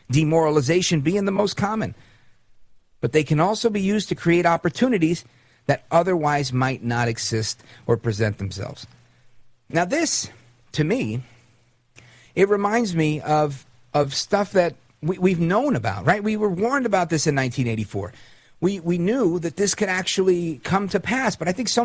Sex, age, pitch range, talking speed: male, 50-69, 120-170 Hz, 160 wpm